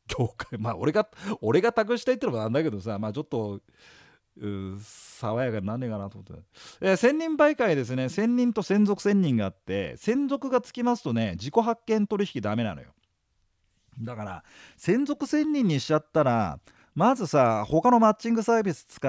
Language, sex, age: Japanese, male, 40-59